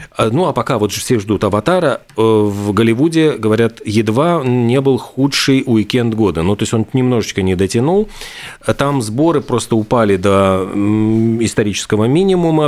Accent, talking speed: native, 140 wpm